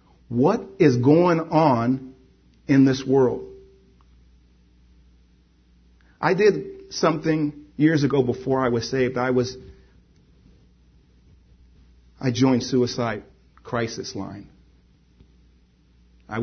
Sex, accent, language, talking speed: male, American, English, 90 wpm